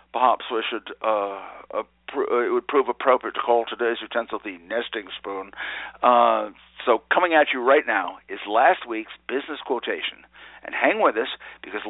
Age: 60-79